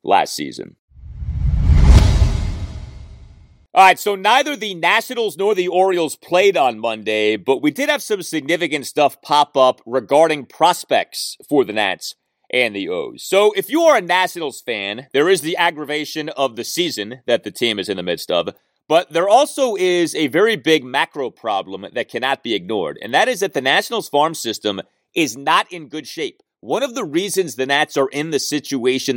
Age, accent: 30-49, American